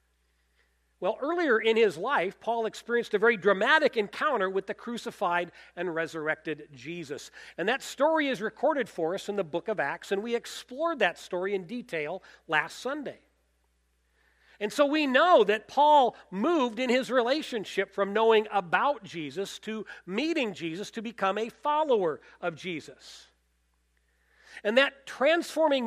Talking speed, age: 150 wpm, 40-59